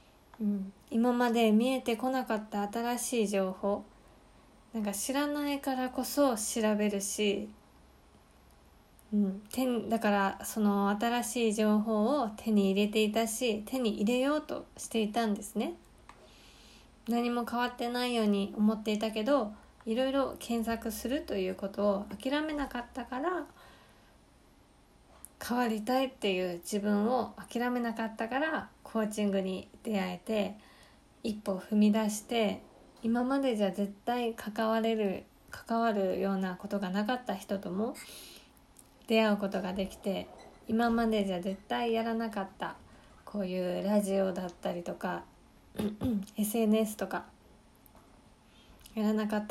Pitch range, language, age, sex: 200-235 Hz, Japanese, 20-39, female